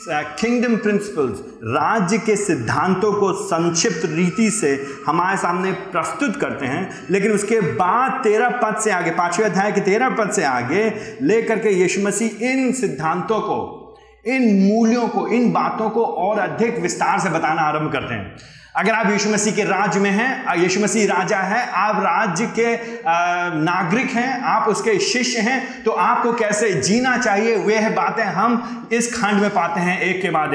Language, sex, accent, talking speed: Hindi, male, native, 165 wpm